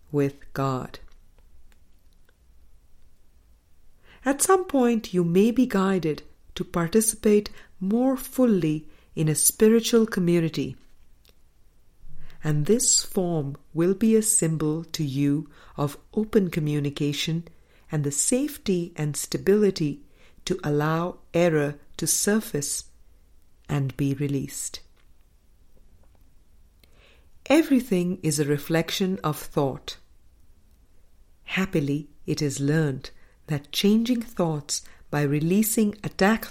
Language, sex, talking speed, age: English, female, 95 wpm, 50-69